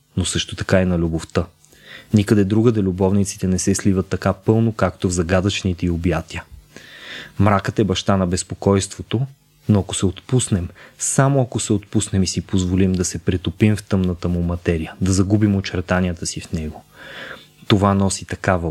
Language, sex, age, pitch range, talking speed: Bulgarian, male, 20-39, 90-105 Hz, 165 wpm